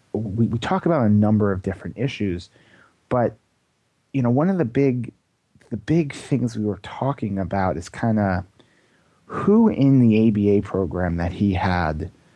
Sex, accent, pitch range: male, American, 90-115 Hz